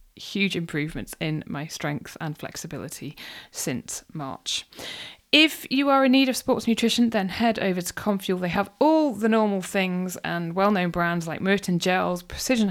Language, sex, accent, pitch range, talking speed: English, female, British, 170-225 Hz, 165 wpm